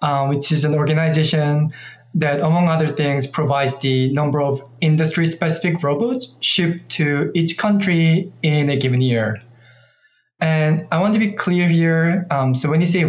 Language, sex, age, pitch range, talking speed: English, male, 20-39, 135-170 Hz, 160 wpm